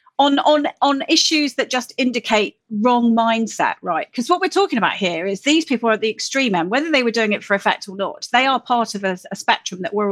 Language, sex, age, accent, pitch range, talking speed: English, female, 40-59, British, 200-255 Hz, 250 wpm